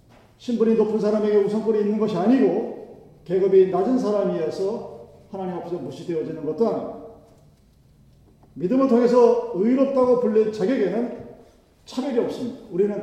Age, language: 40-59, Korean